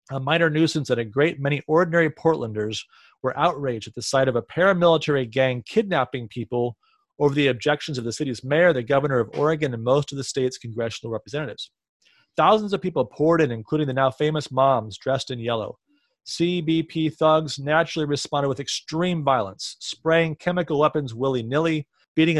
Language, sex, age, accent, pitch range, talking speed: English, male, 30-49, American, 120-150 Hz, 170 wpm